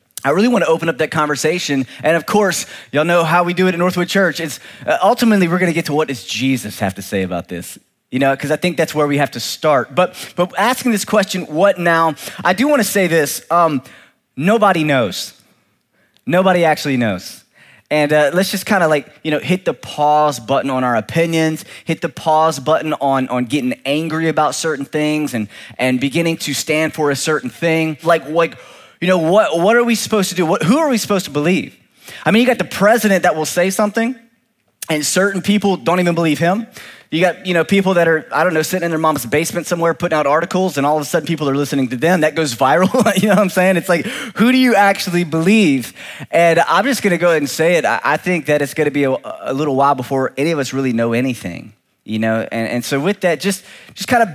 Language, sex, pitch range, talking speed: English, male, 145-185 Hz, 240 wpm